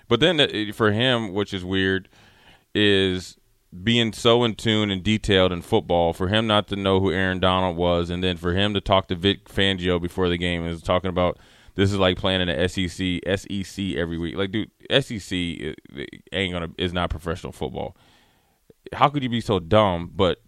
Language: English